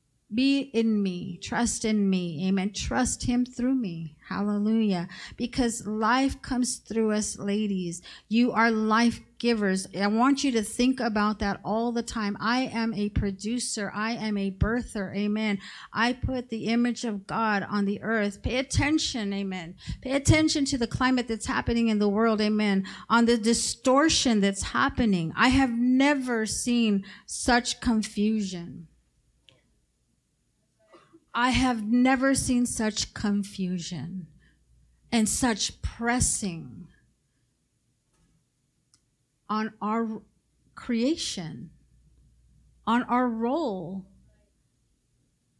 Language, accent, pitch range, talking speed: English, American, 200-245 Hz, 120 wpm